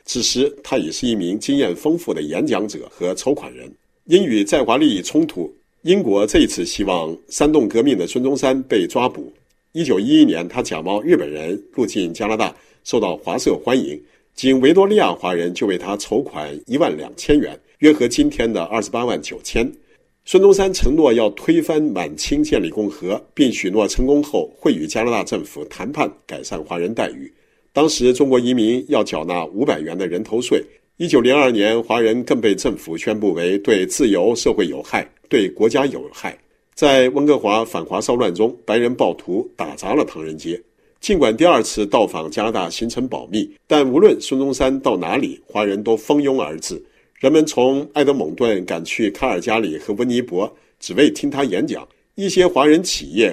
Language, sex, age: Chinese, male, 50-69